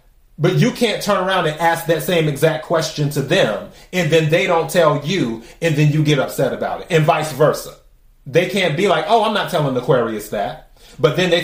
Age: 30-49